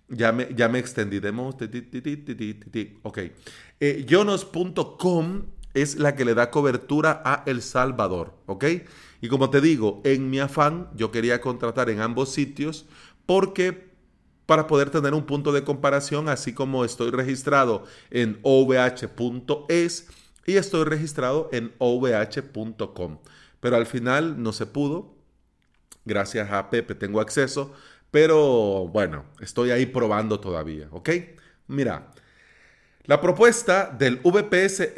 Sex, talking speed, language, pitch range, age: male, 125 wpm, Spanish, 120-150 Hz, 30-49